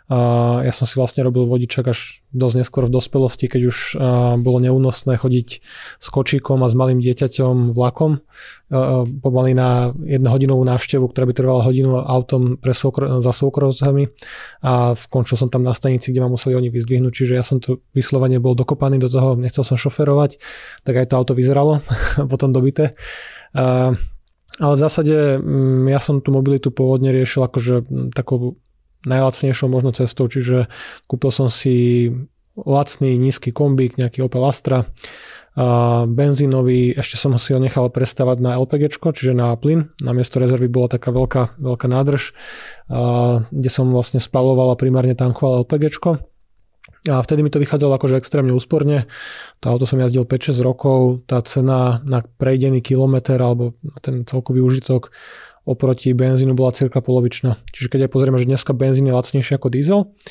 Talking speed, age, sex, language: 165 wpm, 20-39, male, Slovak